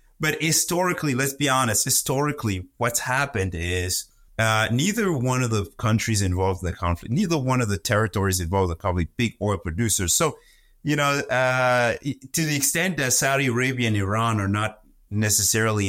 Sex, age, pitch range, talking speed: male, 30-49, 95-130 Hz, 170 wpm